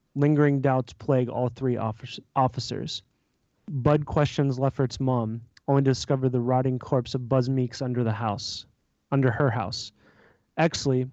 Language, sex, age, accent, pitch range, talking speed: English, male, 20-39, American, 120-140 Hz, 140 wpm